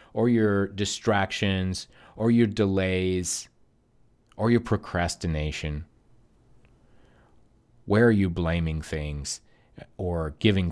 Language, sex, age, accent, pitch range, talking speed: English, male, 30-49, American, 85-115 Hz, 90 wpm